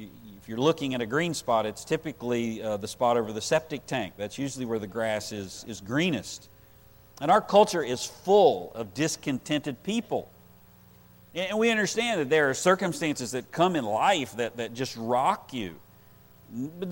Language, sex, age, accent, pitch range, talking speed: English, male, 50-69, American, 115-155 Hz, 175 wpm